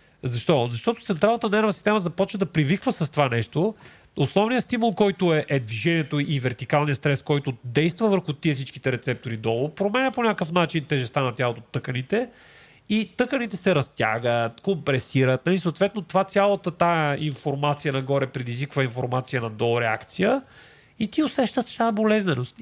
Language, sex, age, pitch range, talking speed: Bulgarian, male, 40-59, 140-210 Hz, 150 wpm